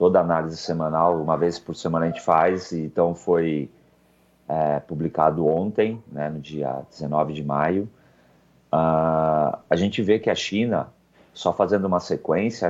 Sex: male